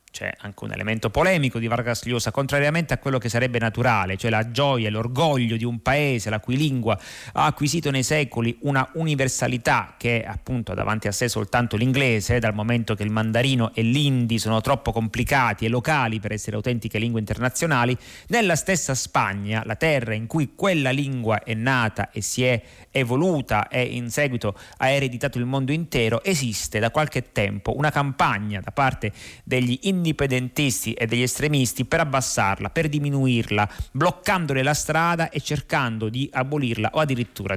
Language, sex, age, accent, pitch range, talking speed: Italian, male, 30-49, native, 110-135 Hz, 170 wpm